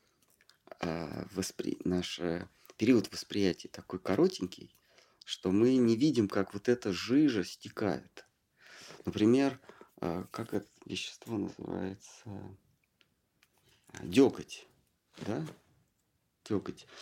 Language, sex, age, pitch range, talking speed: Russian, male, 40-59, 95-125 Hz, 80 wpm